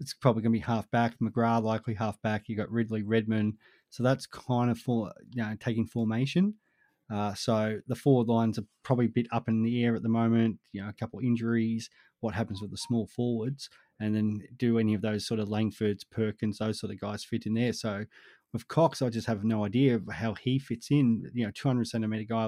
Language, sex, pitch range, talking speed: English, male, 110-120 Hz, 235 wpm